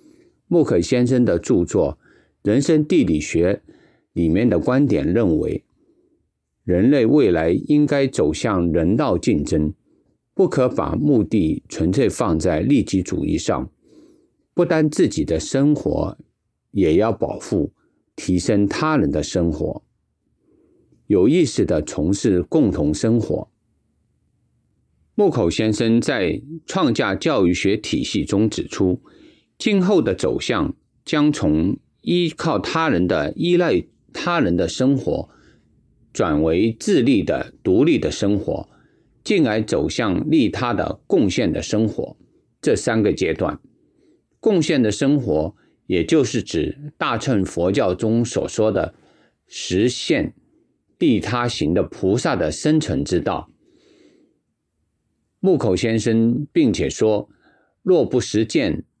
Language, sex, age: English, male, 50-69